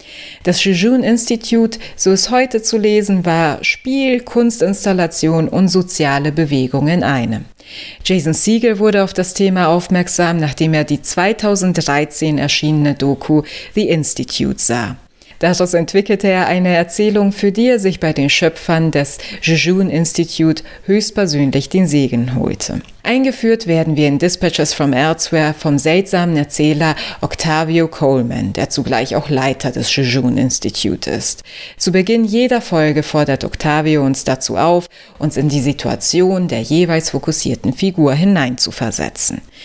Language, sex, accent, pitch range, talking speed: German, female, German, 145-195 Hz, 135 wpm